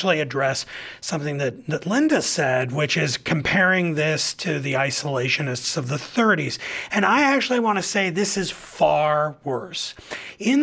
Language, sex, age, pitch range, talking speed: English, male, 30-49, 155-210 Hz, 150 wpm